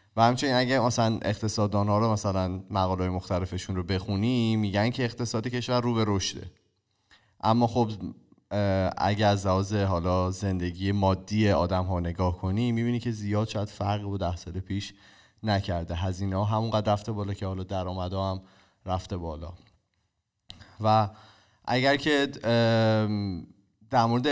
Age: 20-39